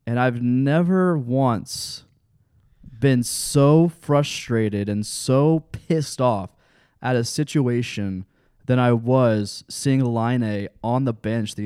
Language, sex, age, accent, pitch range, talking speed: English, male, 20-39, American, 110-140 Hz, 125 wpm